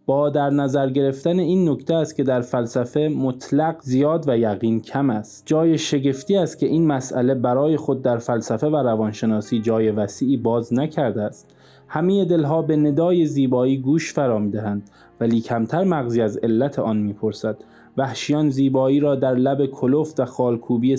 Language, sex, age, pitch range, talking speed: Persian, male, 20-39, 115-145 Hz, 160 wpm